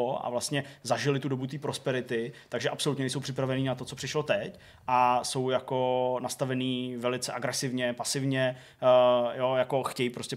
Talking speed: 155 wpm